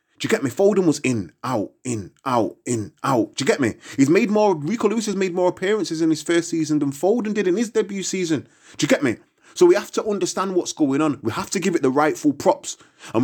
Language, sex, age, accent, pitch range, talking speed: English, male, 20-39, British, 140-200 Hz, 260 wpm